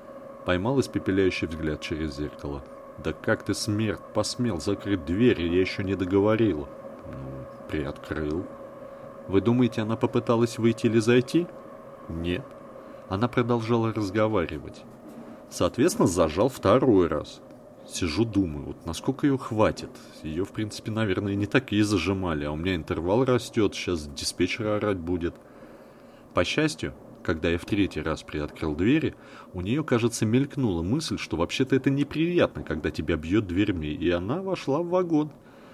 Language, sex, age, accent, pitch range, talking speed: Russian, male, 30-49, native, 85-120 Hz, 140 wpm